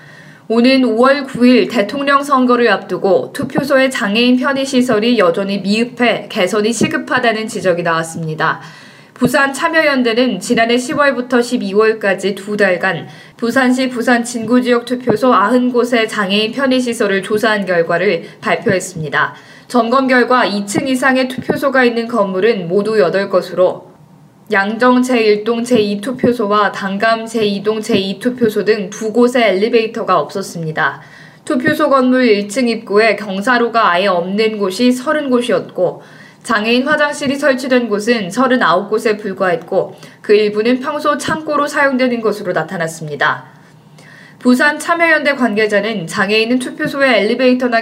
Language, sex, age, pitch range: Korean, female, 20-39, 195-255 Hz